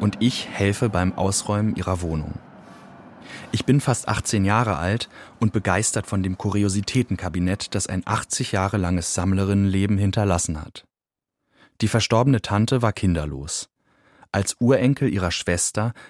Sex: male